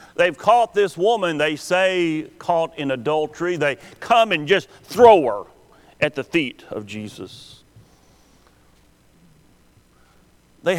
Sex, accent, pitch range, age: male, American, 130-180 Hz, 40-59